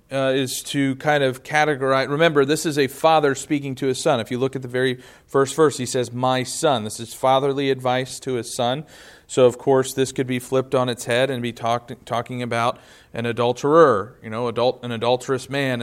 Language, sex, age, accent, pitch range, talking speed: English, male, 40-59, American, 115-135 Hz, 215 wpm